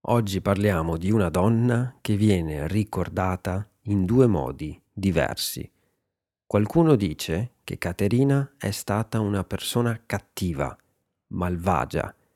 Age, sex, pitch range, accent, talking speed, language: 40-59, male, 90-115 Hz, native, 105 wpm, Italian